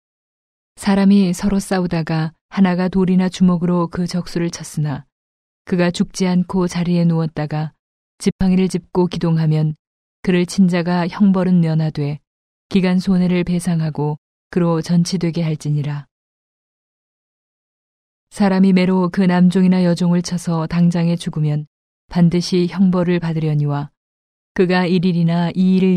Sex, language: female, Korean